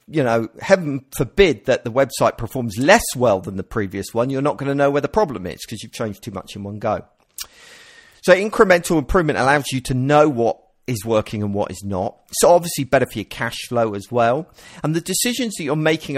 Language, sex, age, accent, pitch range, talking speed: English, male, 40-59, British, 105-145 Hz, 225 wpm